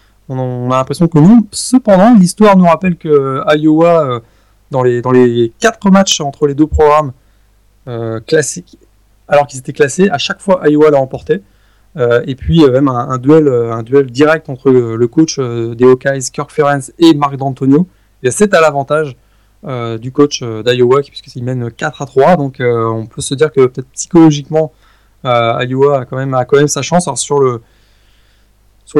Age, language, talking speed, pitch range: 20-39, French, 190 wpm, 120-150 Hz